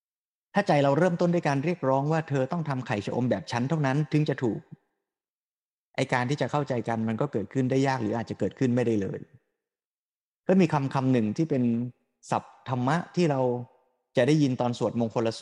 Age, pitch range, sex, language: 20-39, 120-155 Hz, male, Thai